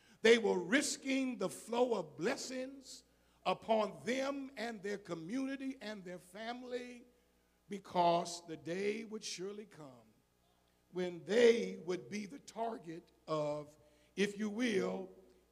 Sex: male